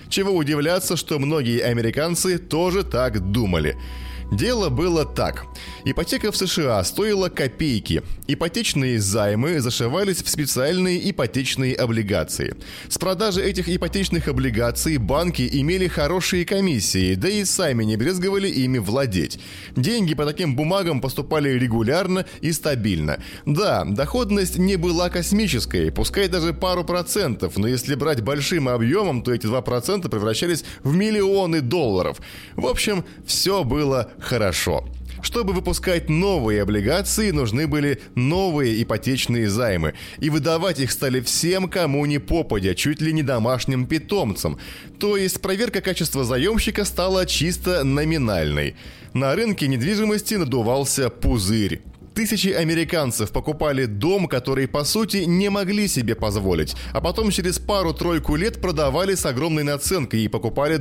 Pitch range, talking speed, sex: 120-180 Hz, 130 wpm, male